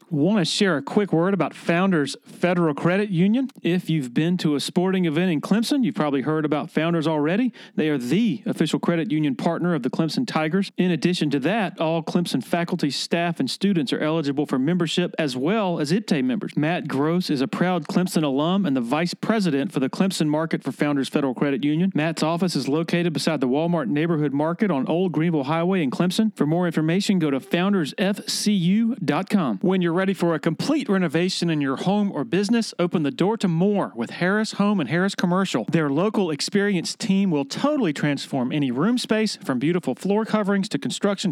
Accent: American